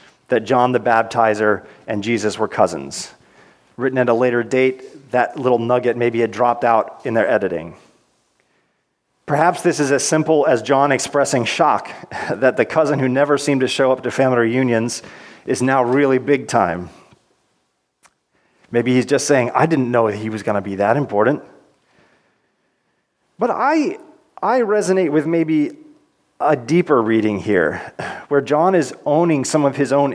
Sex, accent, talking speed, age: male, American, 160 wpm, 30-49